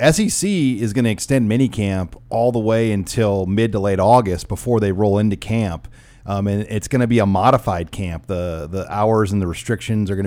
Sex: male